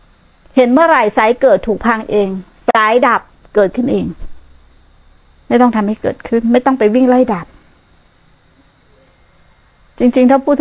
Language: Thai